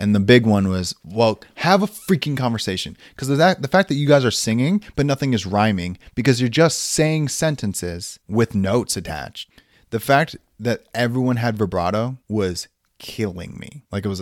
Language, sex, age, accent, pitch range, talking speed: English, male, 30-49, American, 95-130 Hz, 185 wpm